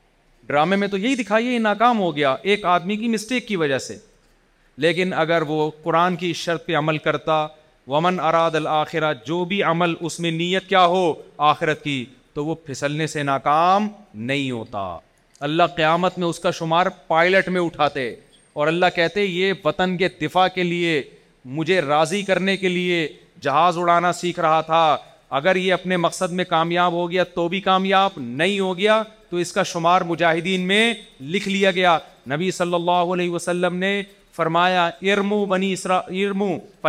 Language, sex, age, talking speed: Urdu, male, 40-59, 170 wpm